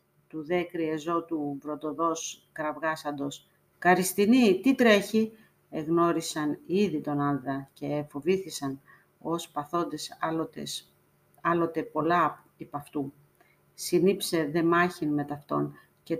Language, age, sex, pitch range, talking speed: Greek, 40-59, female, 145-170 Hz, 110 wpm